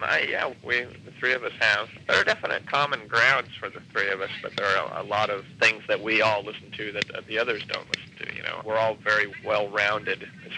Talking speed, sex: 245 wpm, male